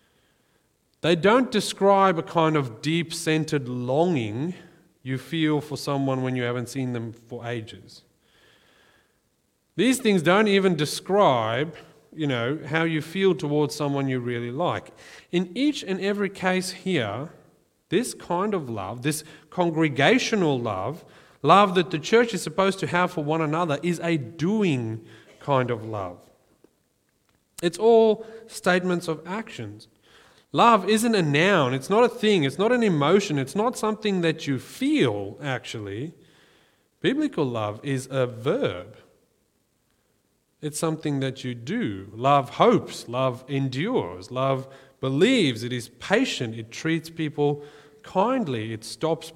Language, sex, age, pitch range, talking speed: English, male, 40-59, 130-185 Hz, 135 wpm